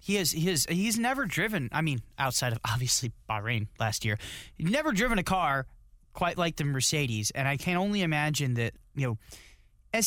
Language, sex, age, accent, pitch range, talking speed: English, male, 30-49, American, 125-180 Hz, 195 wpm